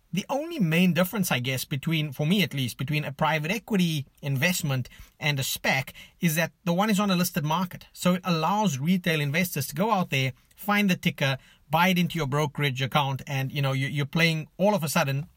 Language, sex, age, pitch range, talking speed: English, male, 30-49, 145-180 Hz, 220 wpm